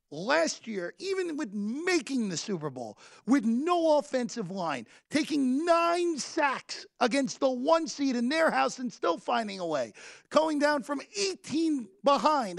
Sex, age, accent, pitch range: male, 40-59, American, 195-280 Hz